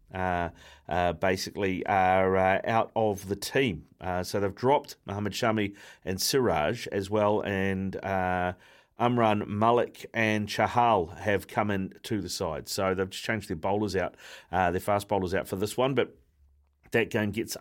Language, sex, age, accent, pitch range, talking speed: English, male, 40-59, Australian, 95-115 Hz, 170 wpm